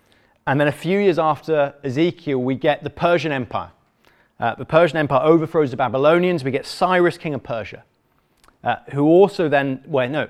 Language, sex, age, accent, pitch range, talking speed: English, male, 30-49, British, 120-155 Hz, 180 wpm